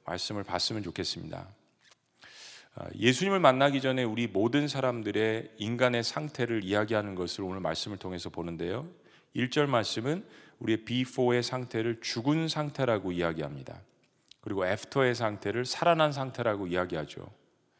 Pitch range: 105-140 Hz